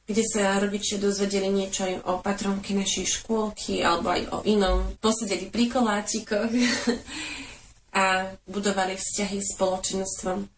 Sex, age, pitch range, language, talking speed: female, 20-39, 195-210 Hz, Slovak, 125 wpm